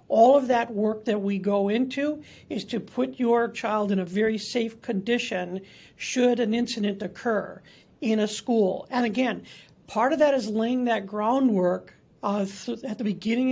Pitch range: 205-250 Hz